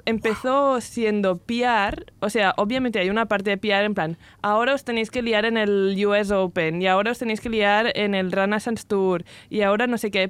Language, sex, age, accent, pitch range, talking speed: Spanish, female, 20-39, Spanish, 190-230 Hz, 215 wpm